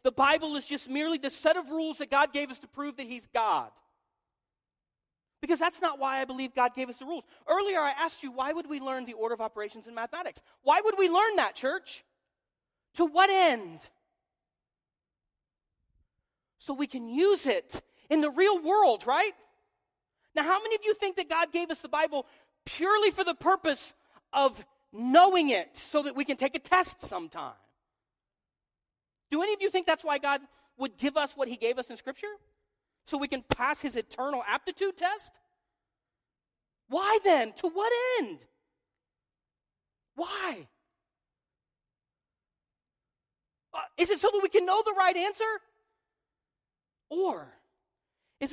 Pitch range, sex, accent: 270-365 Hz, male, American